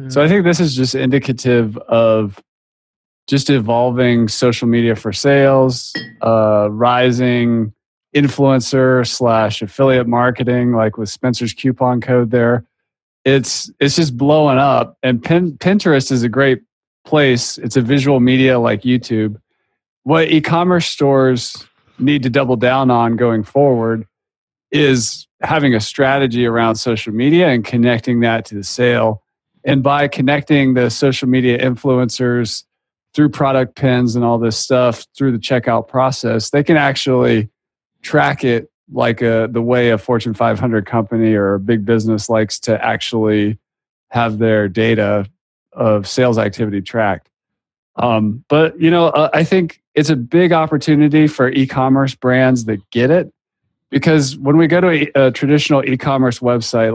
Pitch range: 115-140 Hz